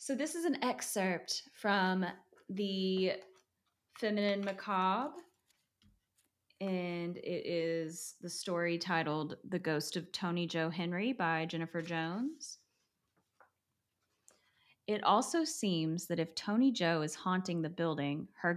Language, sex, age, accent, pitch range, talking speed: English, female, 20-39, American, 165-205 Hz, 115 wpm